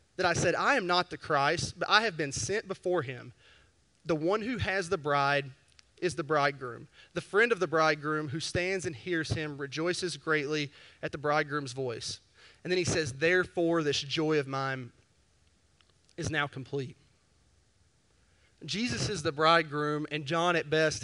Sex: male